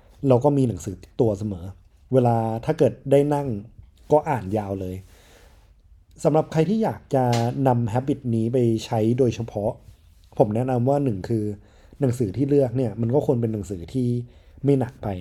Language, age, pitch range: Thai, 20-39, 100-135 Hz